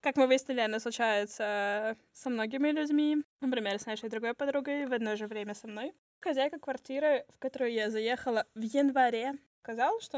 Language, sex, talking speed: Russian, female, 170 wpm